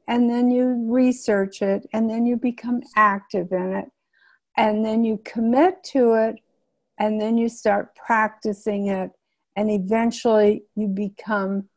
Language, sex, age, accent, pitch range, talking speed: English, female, 60-79, American, 210-250 Hz, 145 wpm